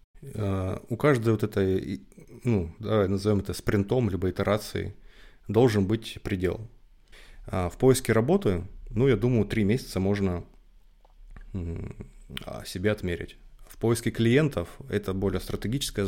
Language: Russian